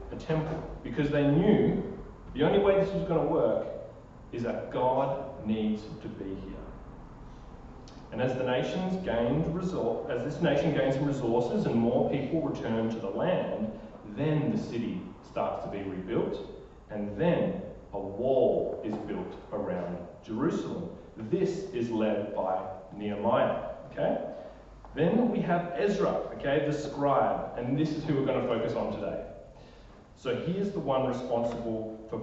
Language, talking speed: English, 155 wpm